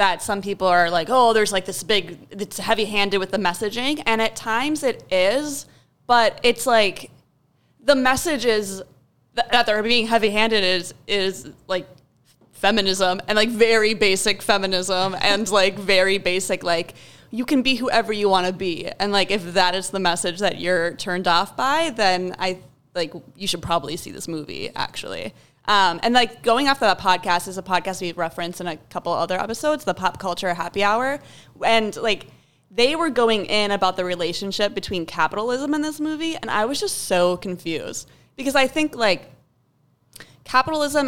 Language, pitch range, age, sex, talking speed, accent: English, 180-230 Hz, 20-39, female, 180 wpm, American